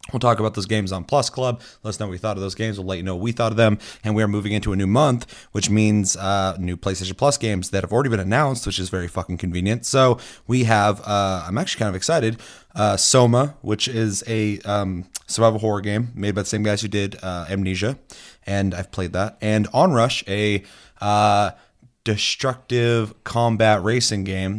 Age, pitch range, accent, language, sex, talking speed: 30-49, 100-120 Hz, American, English, male, 220 wpm